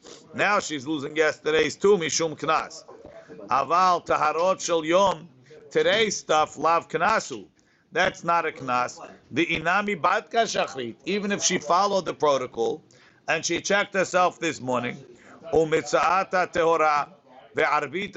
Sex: male